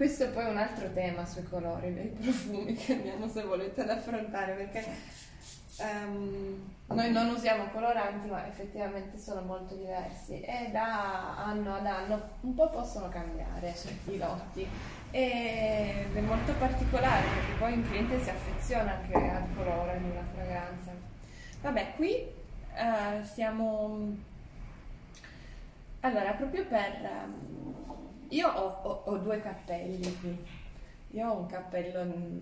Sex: female